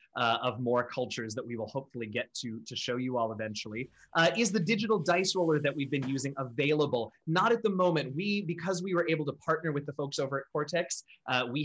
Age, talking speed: 20-39, 230 wpm